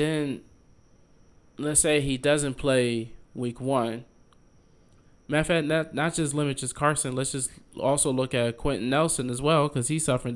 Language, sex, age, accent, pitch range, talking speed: English, male, 20-39, American, 120-155 Hz, 170 wpm